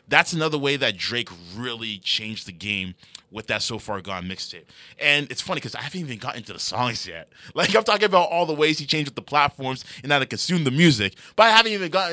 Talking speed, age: 245 wpm, 20-39